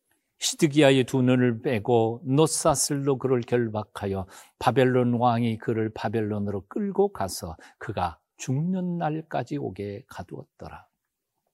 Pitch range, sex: 105-160 Hz, male